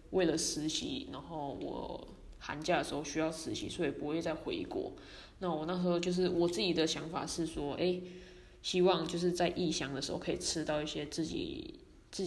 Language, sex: Chinese, female